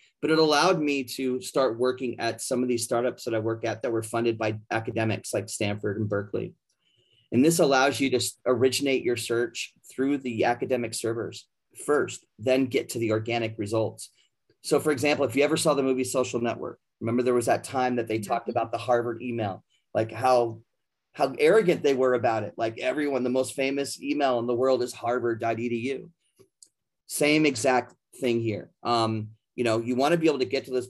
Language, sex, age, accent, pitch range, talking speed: English, male, 30-49, American, 115-135 Hz, 200 wpm